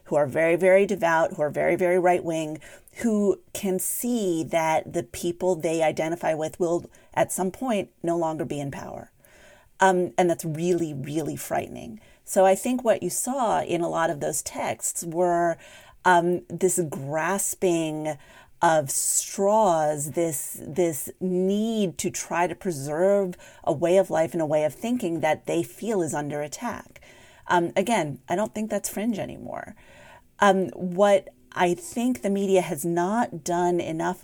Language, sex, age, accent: English, female, 40-59, American